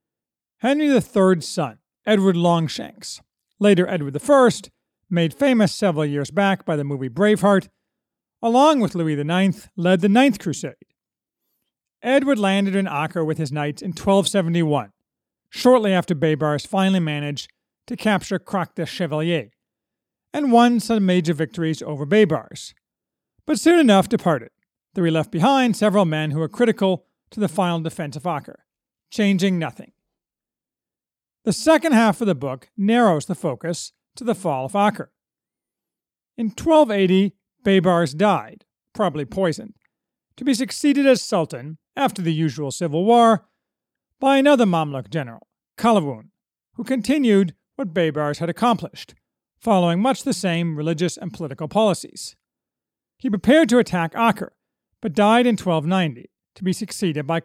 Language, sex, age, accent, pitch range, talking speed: English, male, 40-59, American, 160-225 Hz, 140 wpm